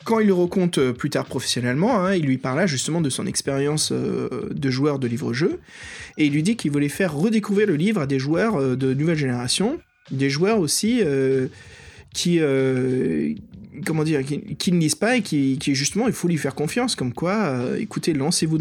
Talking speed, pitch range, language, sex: 205 wpm, 130-170 Hz, French, male